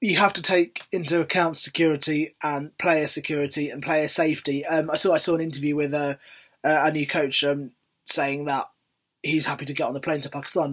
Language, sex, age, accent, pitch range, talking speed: English, male, 20-39, British, 150-185 Hz, 205 wpm